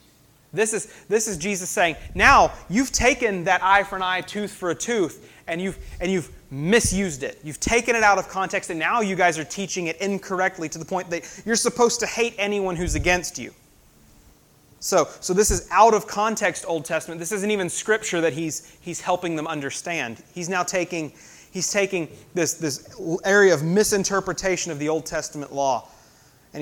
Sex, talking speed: male, 190 wpm